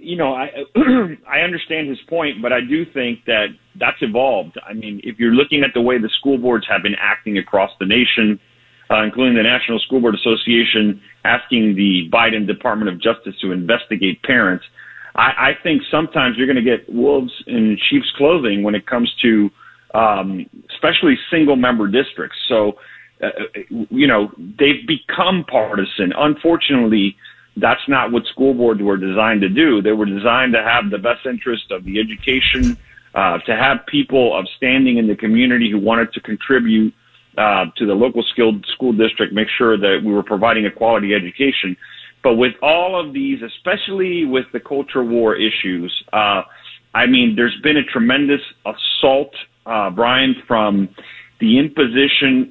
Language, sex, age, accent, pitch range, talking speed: English, male, 40-59, American, 105-140 Hz, 170 wpm